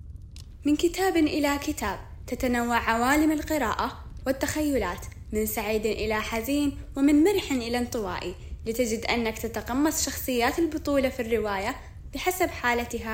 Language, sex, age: Arabic, female, 10-29